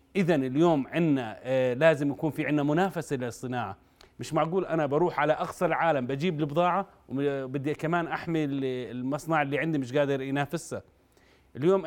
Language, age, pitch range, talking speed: Arabic, 30-49, 135-175 Hz, 140 wpm